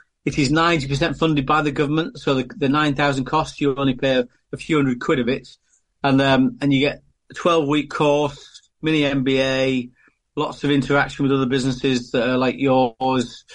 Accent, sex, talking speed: British, male, 200 wpm